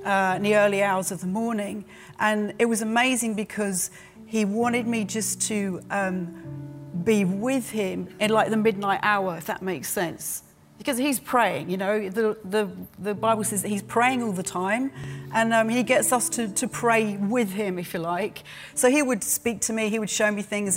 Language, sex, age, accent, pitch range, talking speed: English, female, 40-59, British, 185-220 Hz, 205 wpm